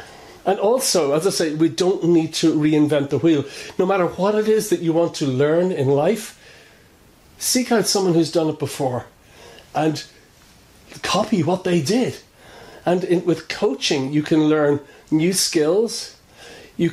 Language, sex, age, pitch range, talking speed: English, male, 40-59, 155-195 Hz, 160 wpm